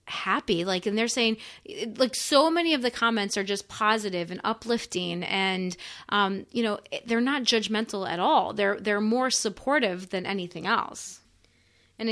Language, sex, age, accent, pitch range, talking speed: English, female, 30-49, American, 195-245 Hz, 165 wpm